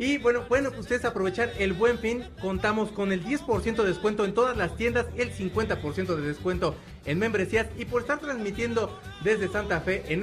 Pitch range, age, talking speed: 180-220 Hz, 40-59, 190 wpm